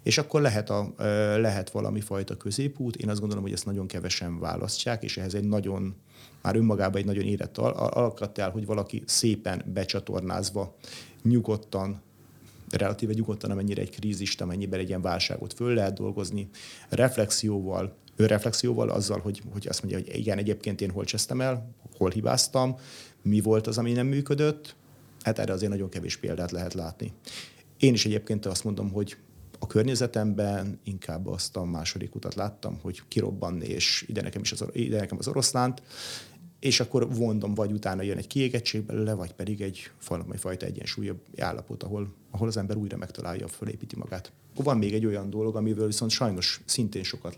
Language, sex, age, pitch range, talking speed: Hungarian, male, 30-49, 100-120 Hz, 170 wpm